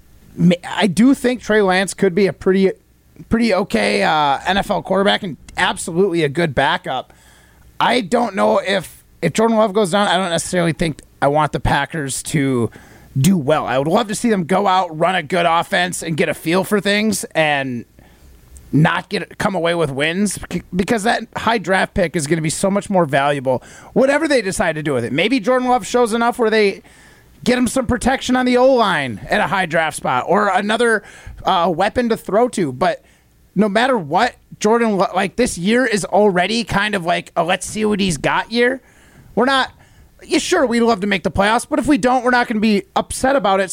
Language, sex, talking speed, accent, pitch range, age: English, male, 210 wpm, American, 165-225 Hz, 30-49